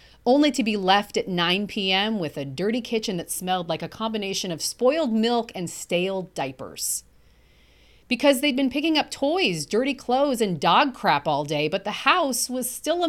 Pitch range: 170-260 Hz